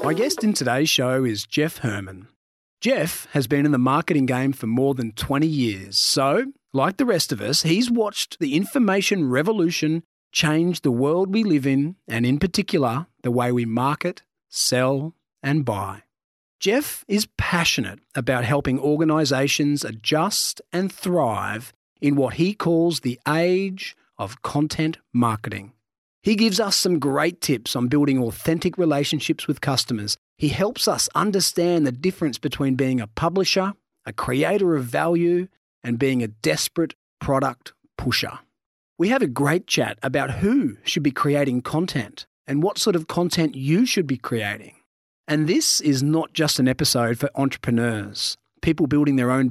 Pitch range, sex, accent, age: 125-170 Hz, male, Australian, 40-59